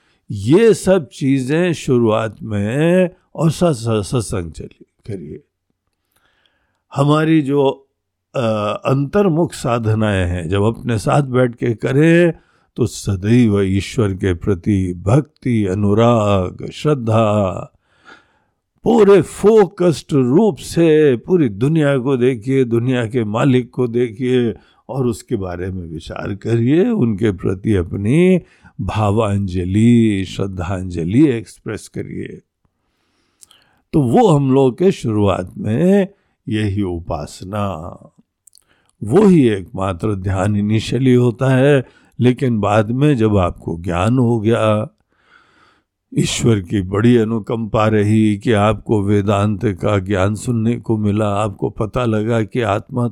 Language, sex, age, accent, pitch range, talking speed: Hindi, male, 60-79, native, 105-135 Hz, 110 wpm